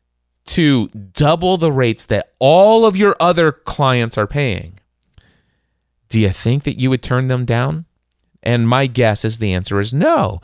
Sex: male